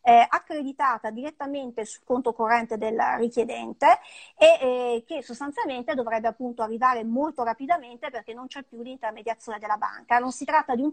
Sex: female